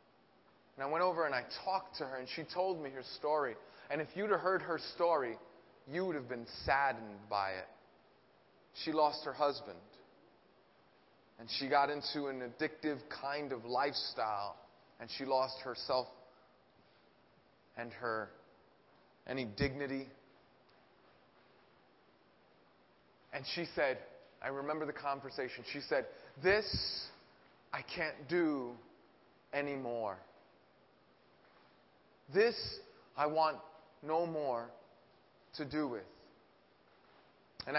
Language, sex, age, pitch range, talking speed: English, male, 30-49, 130-160 Hz, 115 wpm